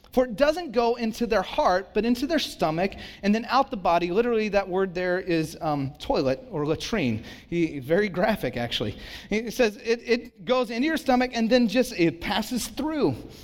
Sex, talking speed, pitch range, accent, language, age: male, 195 wpm, 170-220 Hz, American, English, 30-49